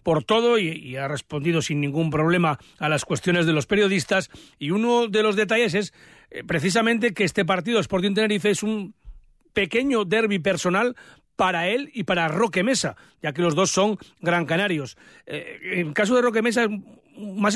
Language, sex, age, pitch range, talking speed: Spanish, male, 40-59, 155-205 Hz, 190 wpm